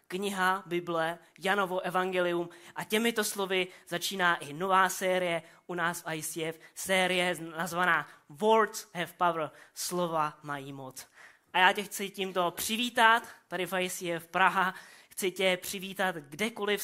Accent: native